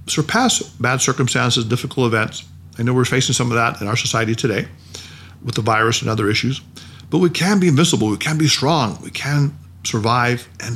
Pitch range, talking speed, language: 105-145 Hz, 195 wpm, English